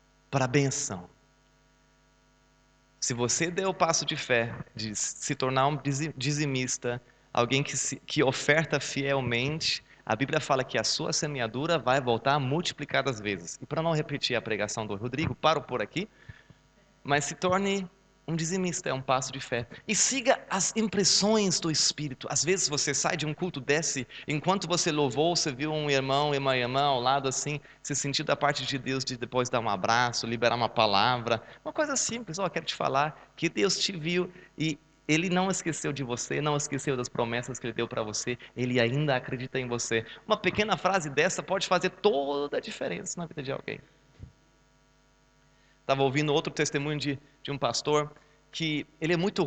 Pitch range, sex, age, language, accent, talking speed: 135-180 Hz, male, 20-39, German, Brazilian, 180 wpm